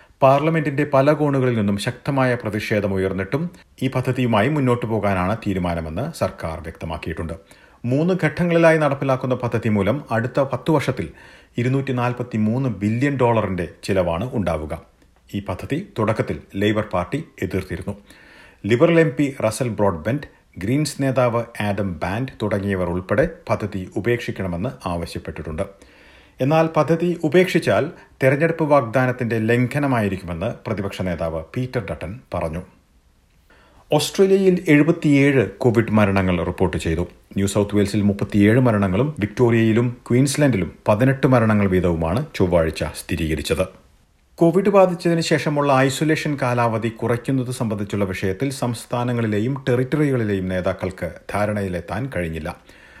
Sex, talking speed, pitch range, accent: male, 95 wpm, 95-135 Hz, native